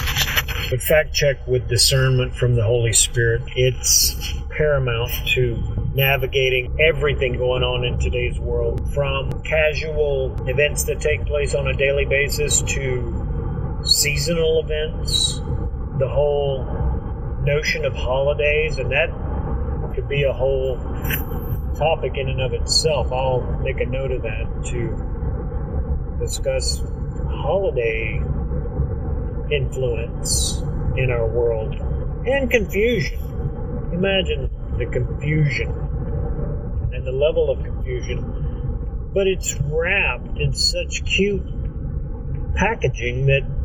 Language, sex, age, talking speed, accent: English, male, 40-59, 110 wpm, American